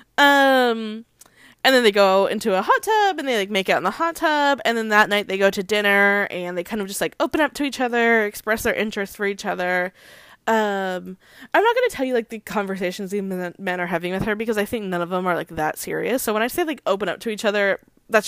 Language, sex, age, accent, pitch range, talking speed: English, female, 10-29, American, 195-245 Hz, 265 wpm